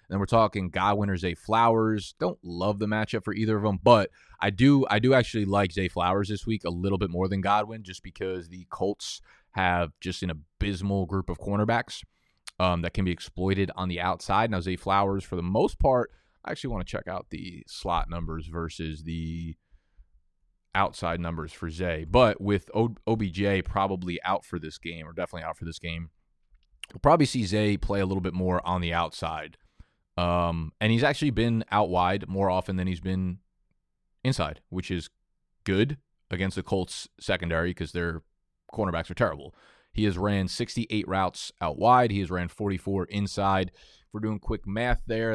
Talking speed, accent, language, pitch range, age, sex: 190 wpm, American, English, 90-105 Hz, 20-39, male